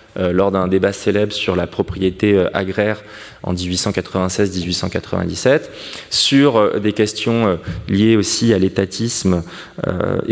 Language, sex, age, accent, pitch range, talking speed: French, male, 20-39, French, 100-125 Hz, 130 wpm